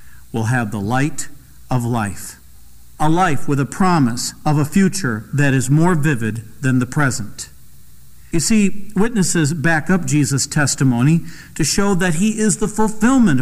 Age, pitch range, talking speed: 50-69, 120-170 Hz, 155 wpm